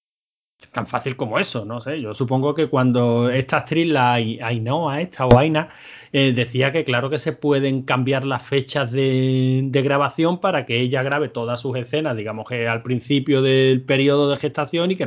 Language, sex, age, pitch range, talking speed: Spanish, male, 30-49, 125-155 Hz, 195 wpm